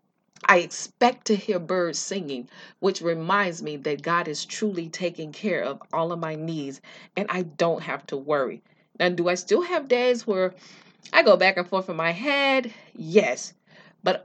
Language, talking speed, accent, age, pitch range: English, 180 wpm, American, 40-59, 165-220 Hz